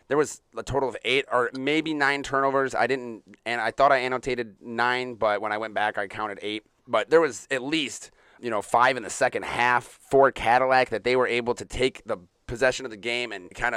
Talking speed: 230 wpm